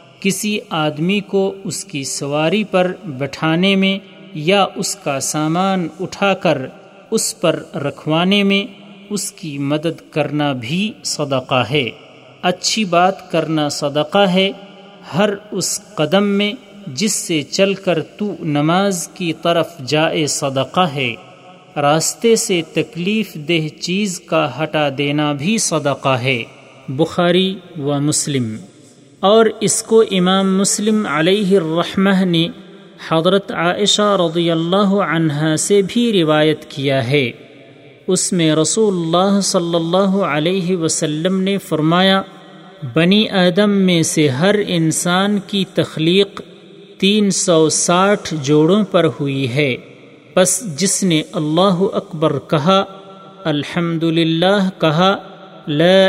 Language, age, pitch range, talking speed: Urdu, 40-59, 155-195 Hz, 120 wpm